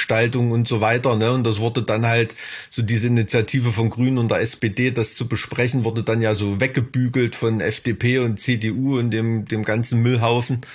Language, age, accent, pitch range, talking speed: German, 40-59, German, 125-185 Hz, 185 wpm